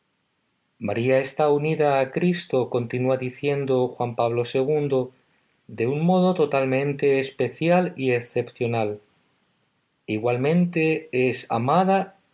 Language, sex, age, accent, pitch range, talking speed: Spanish, male, 50-69, Spanish, 125-155 Hz, 95 wpm